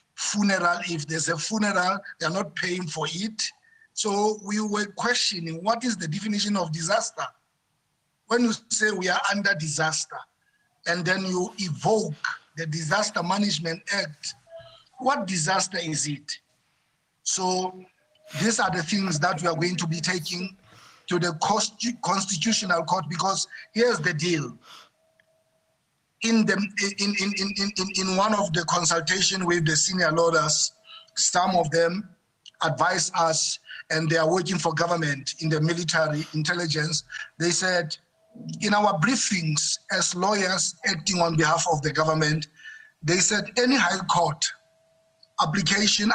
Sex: male